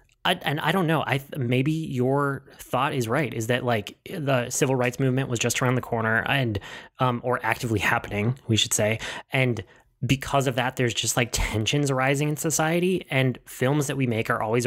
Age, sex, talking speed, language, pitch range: 20-39, male, 205 wpm, English, 115-145 Hz